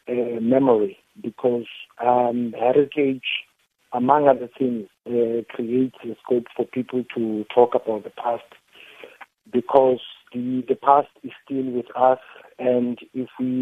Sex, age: male, 50-69